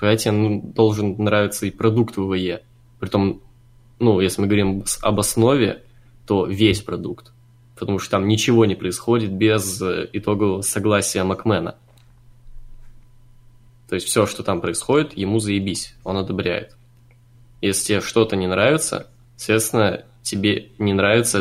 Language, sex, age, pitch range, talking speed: Russian, male, 20-39, 100-120 Hz, 130 wpm